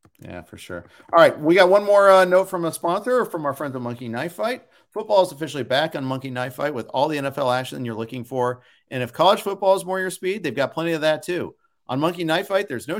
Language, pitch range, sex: English, 130-190 Hz, male